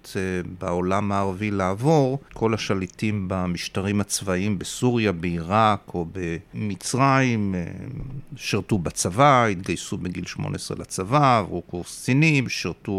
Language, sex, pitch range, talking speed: Hebrew, male, 95-120 Hz, 95 wpm